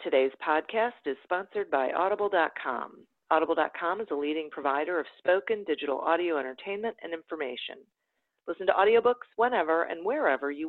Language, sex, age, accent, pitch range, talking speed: English, female, 50-69, American, 140-180 Hz, 140 wpm